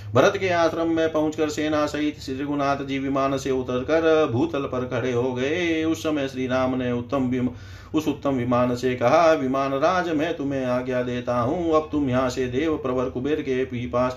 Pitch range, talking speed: 120-140 Hz, 190 wpm